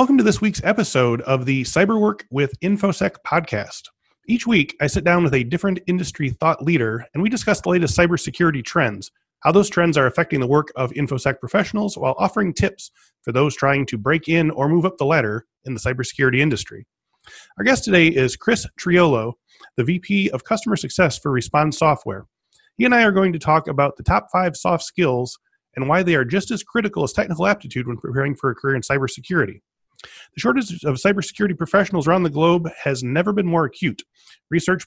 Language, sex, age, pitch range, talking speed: English, male, 30-49, 135-185 Hz, 200 wpm